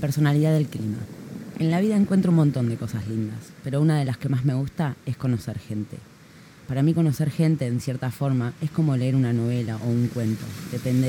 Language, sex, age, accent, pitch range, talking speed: Spanish, female, 20-39, Argentinian, 120-150 Hz, 210 wpm